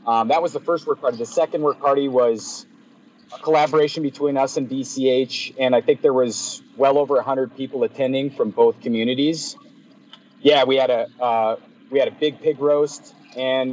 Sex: male